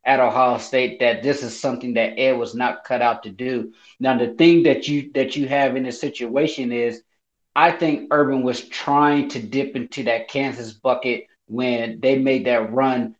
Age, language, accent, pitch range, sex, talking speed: 30-49, English, American, 120-140 Hz, male, 195 wpm